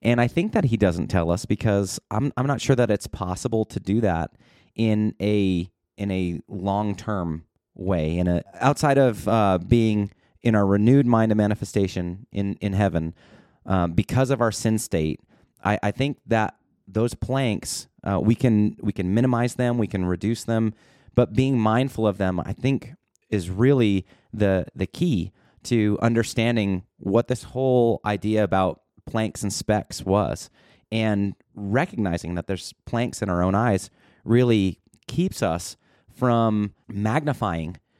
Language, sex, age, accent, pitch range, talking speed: English, male, 30-49, American, 95-120 Hz, 160 wpm